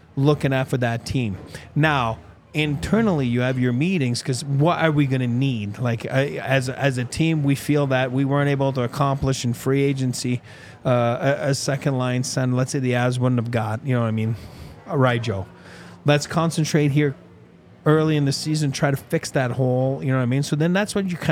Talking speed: 220 wpm